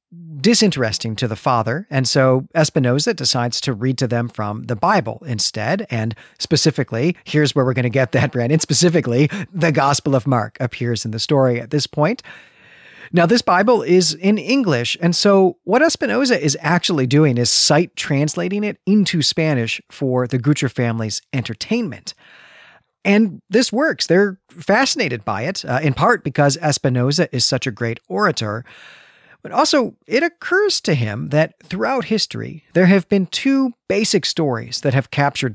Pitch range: 125-180 Hz